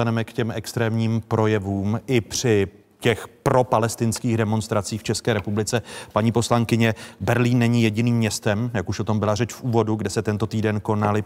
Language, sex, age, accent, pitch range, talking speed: Czech, male, 40-59, native, 105-115 Hz, 170 wpm